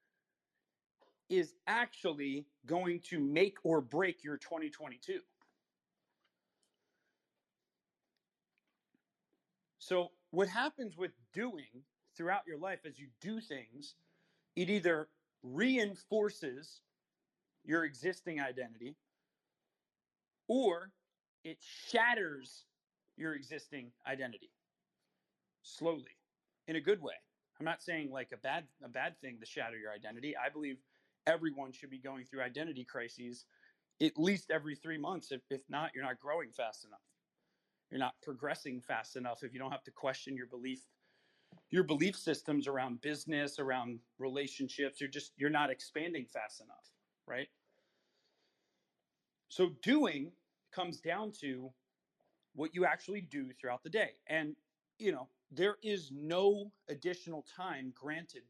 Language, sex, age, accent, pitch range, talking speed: English, male, 40-59, American, 135-185 Hz, 125 wpm